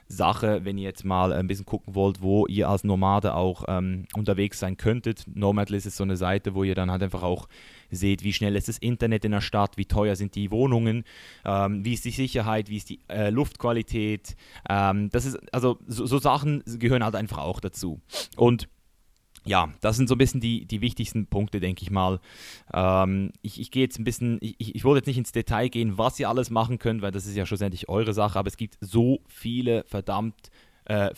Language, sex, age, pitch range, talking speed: German, male, 10-29, 100-120 Hz, 220 wpm